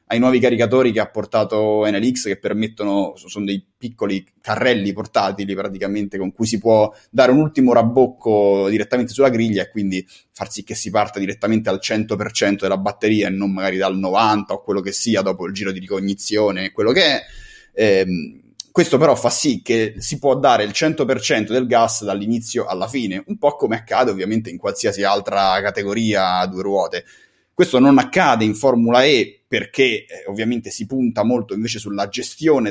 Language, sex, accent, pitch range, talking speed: Italian, male, native, 100-120 Hz, 180 wpm